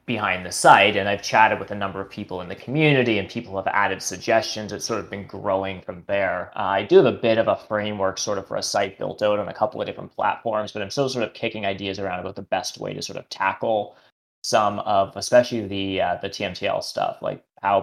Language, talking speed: English, 250 wpm